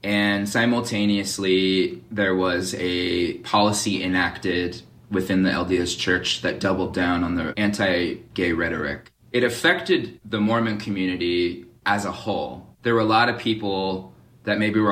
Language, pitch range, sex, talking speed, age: English, 90-120 Hz, male, 140 wpm, 20-39